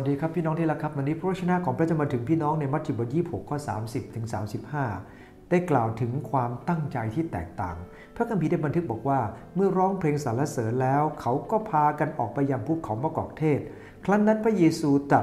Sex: male